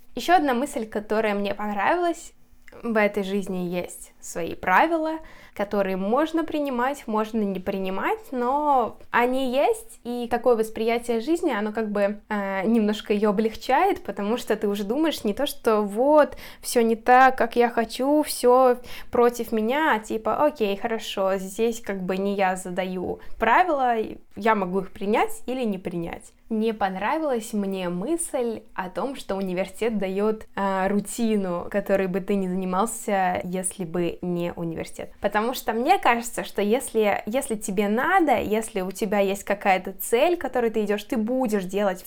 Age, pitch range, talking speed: 10-29, 190-240 Hz, 155 wpm